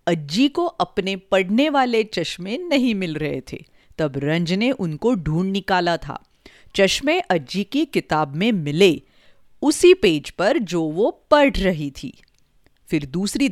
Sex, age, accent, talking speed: female, 40-59, native, 145 wpm